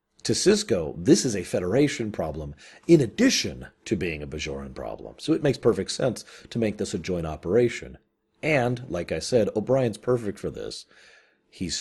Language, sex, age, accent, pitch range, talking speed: English, male, 40-59, American, 85-125 Hz, 175 wpm